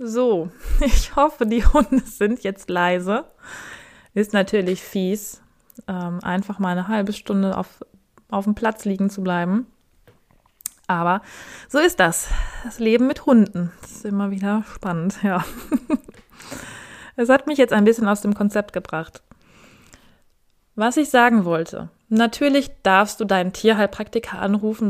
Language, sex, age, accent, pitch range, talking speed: German, female, 20-39, German, 180-220 Hz, 135 wpm